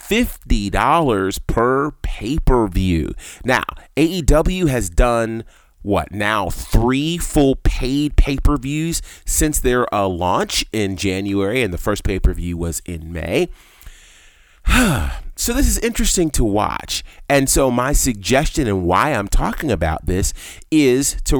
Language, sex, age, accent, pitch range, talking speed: English, male, 30-49, American, 90-135 Hz, 125 wpm